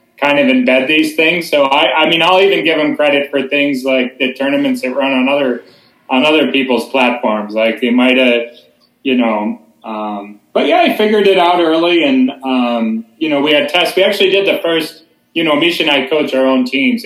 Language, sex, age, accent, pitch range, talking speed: English, male, 30-49, American, 130-185 Hz, 220 wpm